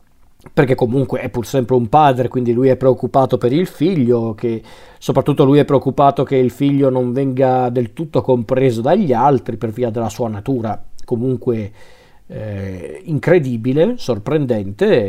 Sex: male